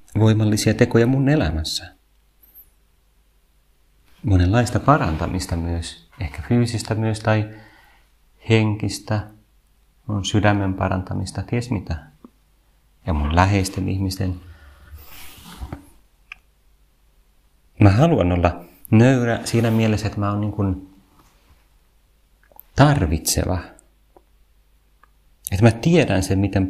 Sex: male